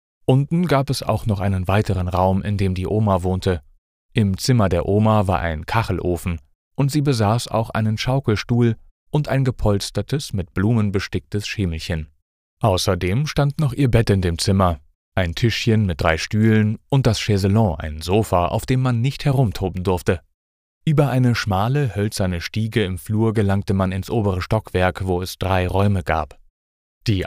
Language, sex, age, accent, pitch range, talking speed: German, male, 30-49, German, 90-115 Hz, 165 wpm